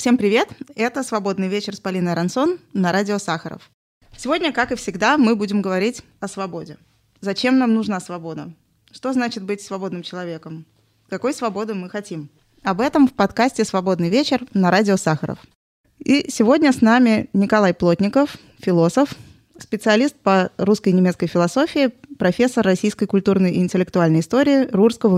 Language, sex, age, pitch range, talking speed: Russian, female, 20-39, 185-225 Hz, 150 wpm